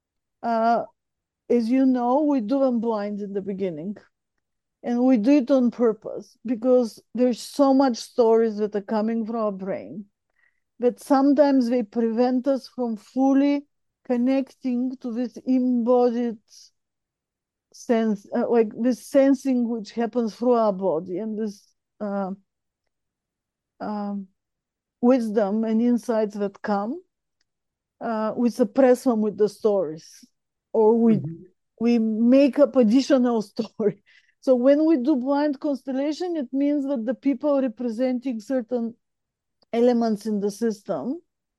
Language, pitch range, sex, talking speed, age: English, 220-265 Hz, female, 130 wpm, 50-69